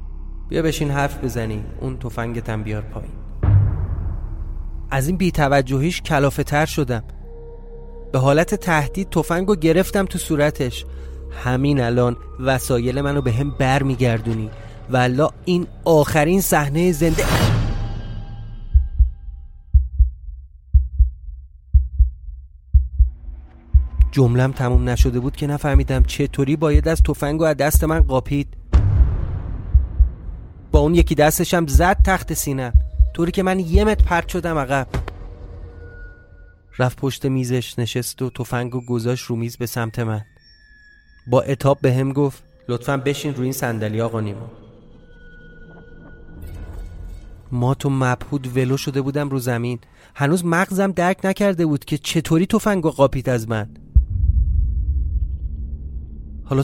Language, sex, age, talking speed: Persian, male, 30-49, 115 wpm